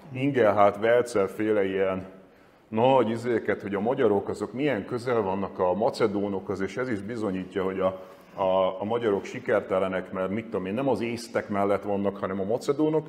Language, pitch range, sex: Hungarian, 100-145 Hz, male